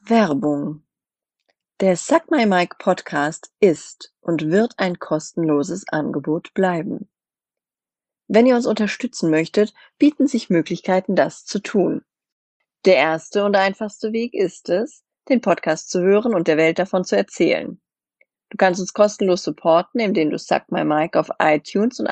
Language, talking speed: German, 145 wpm